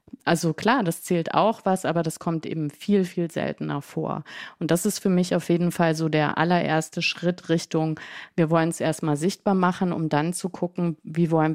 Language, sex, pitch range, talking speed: German, female, 160-185 Hz, 205 wpm